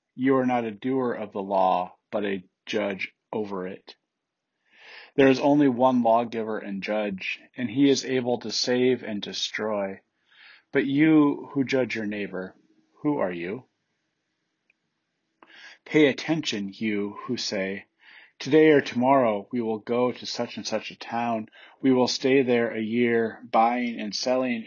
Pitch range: 105-130 Hz